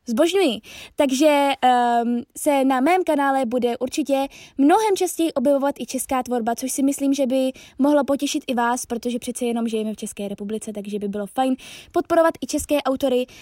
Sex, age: female, 20-39